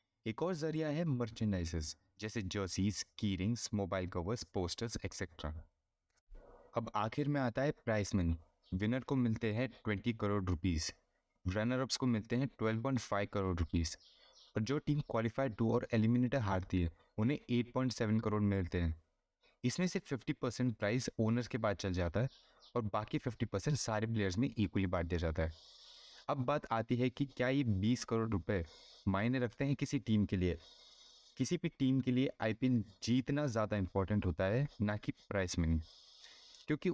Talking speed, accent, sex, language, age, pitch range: 170 wpm, native, male, Hindi, 20-39, 95-130 Hz